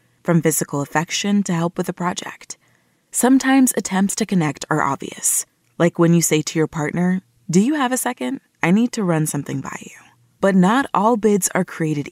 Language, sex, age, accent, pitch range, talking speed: English, female, 20-39, American, 165-215 Hz, 195 wpm